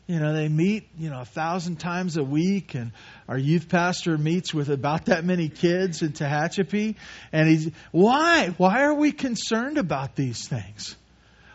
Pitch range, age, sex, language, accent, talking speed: 135-180 Hz, 40-59, male, English, American, 170 wpm